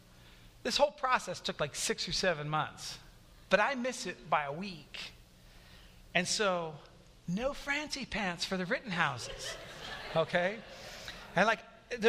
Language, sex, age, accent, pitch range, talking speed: English, male, 40-59, American, 145-215 Hz, 145 wpm